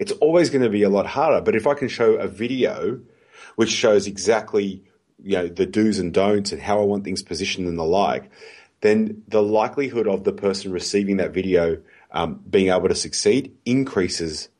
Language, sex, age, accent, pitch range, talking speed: English, male, 30-49, Australian, 95-130 Hz, 190 wpm